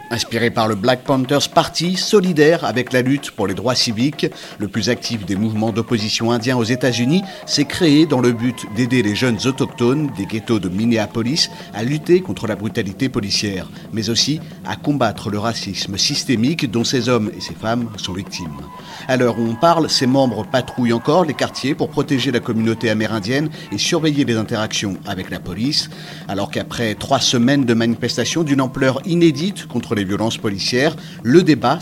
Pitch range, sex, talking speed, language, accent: 110-150 Hz, male, 180 wpm, French, French